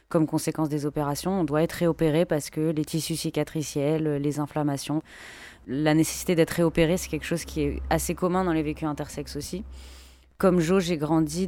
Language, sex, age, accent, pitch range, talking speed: French, female, 20-39, French, 155-170 Hz, 185 wpm